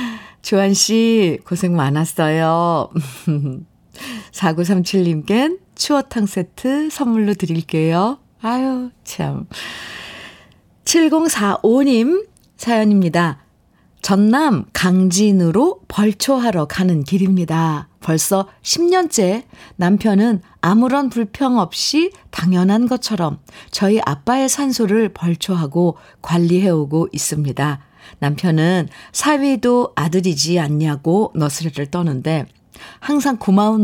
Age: 50-69